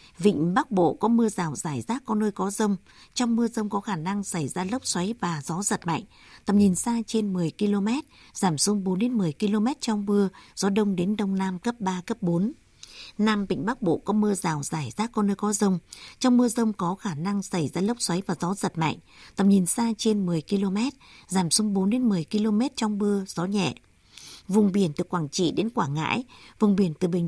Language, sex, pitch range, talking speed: Vietnamese, female, 180-215 Hz, 220 wpm